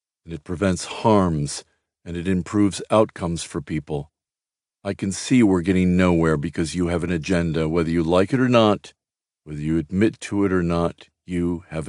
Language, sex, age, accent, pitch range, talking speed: English, male, 50-69, American, 85-95 Hz, 180 wpm